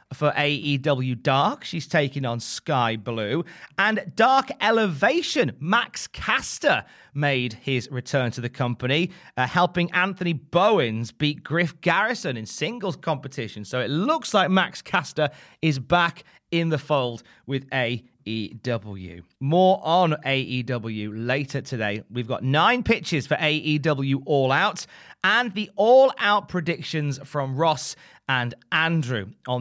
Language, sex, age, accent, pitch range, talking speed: English, male, 30-49, British, 125-190 Hz, 130 wpm